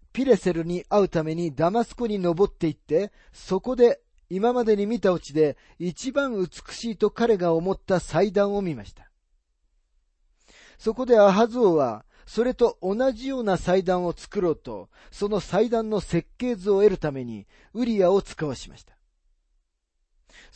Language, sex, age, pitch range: Japanese, male, 40-59, 140-220 Hz